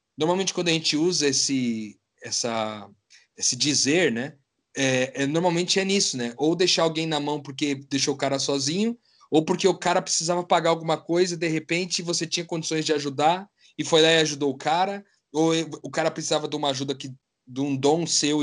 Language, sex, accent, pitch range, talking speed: Portuguese, male, Brazilian, 135-170 Hz, 185 wpm